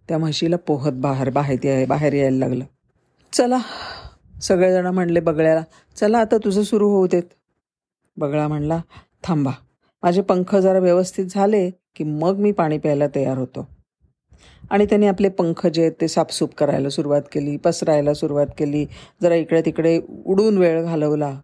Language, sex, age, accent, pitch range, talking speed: Marathi, female, 40-59, native, 155-190 Hz, 150 wpm